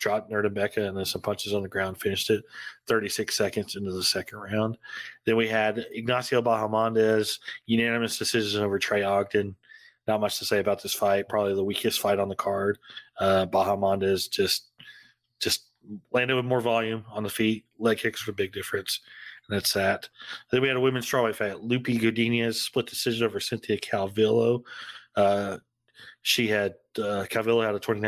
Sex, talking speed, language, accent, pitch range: male, 180 wpm, English, American, 100-120 Hz